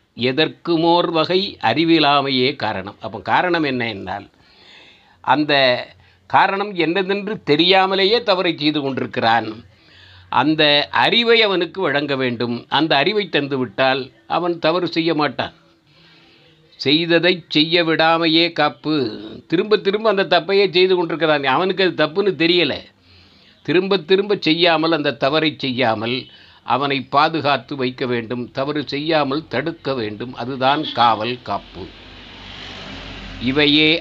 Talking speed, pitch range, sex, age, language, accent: 100 wpm, 125-175 Hz, male, 60-79, Tamil, native